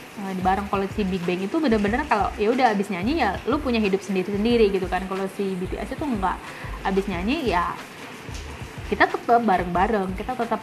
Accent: native